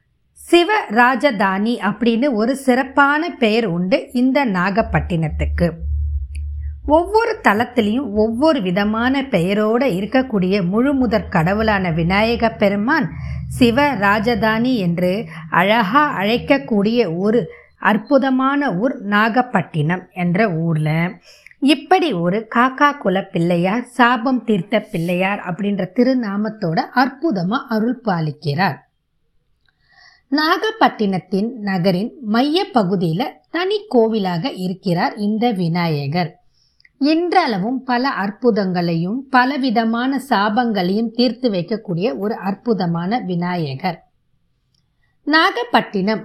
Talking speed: 80 wpm